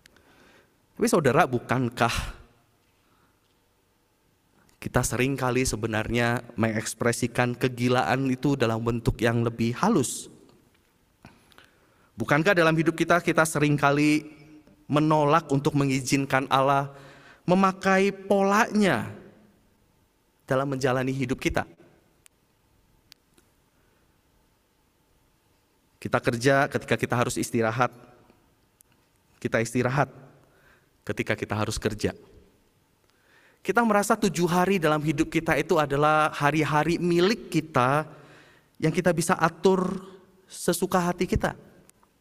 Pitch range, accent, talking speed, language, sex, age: 125-165 Hz, native, 85 wpm, Indonesian, male, 30-49